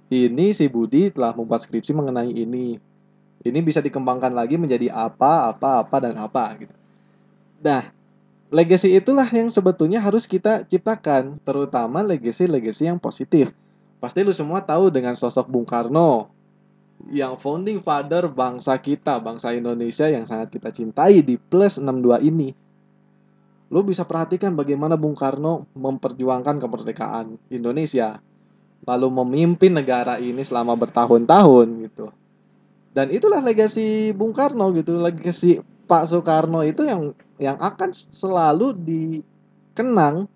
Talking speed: 125 wpm